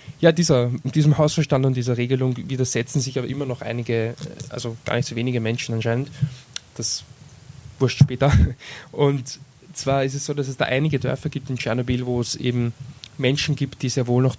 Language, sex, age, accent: German, male, 20-39, German